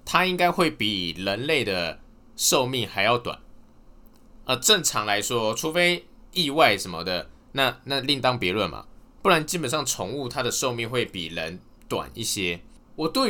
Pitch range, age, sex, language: 100-165 Hz, 20-39, male, Chinese